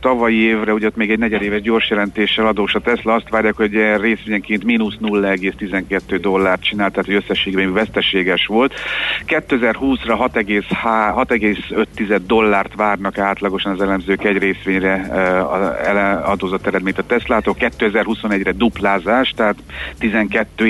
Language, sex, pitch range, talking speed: Hungarian, male, 95-105 Hz, 120 wpm